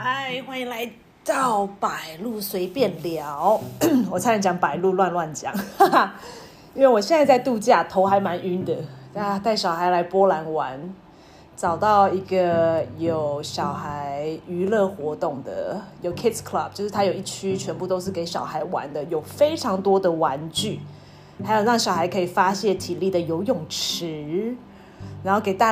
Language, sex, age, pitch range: Chinese, female, 30-49, 165-215 Hz